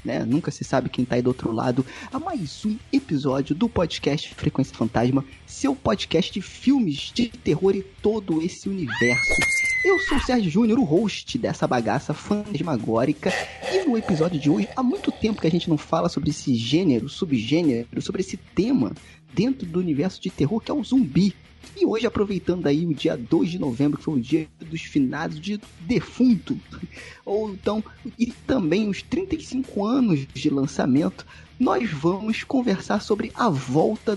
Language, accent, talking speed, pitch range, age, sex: Portuguese, Brazilian, 175 wpm, 145-225 Hz, 20-39, male